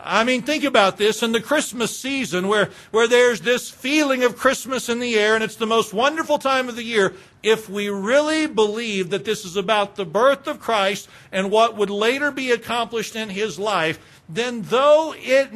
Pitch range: 140-225 Hz